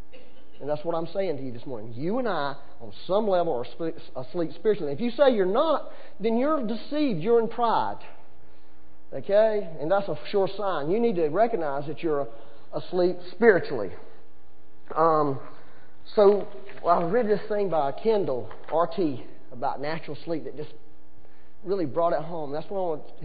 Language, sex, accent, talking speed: English, male, American, 165 wpm